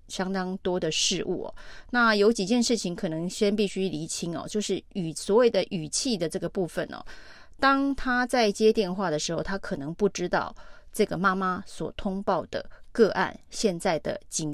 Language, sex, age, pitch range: Chinese, female, 30-49, 175-215 Hz